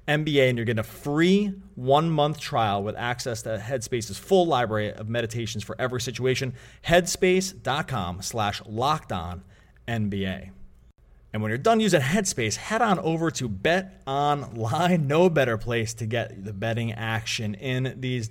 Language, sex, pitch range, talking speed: English, male, 110-145 Hz, 145 wpm